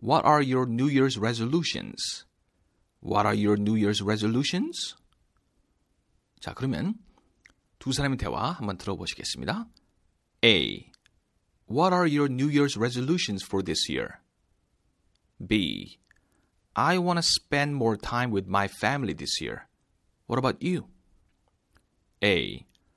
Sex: male